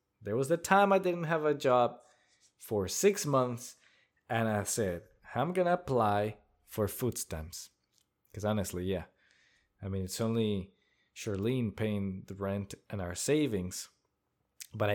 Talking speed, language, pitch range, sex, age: 150 wpm, English, 95-135 Hz, male, 20-39